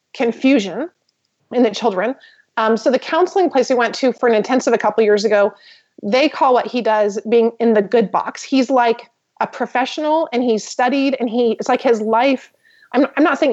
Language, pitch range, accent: English, 220-260 Hz, American